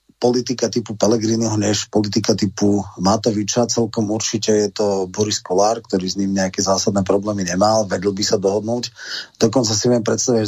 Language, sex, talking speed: Slovak, male, 160 wpm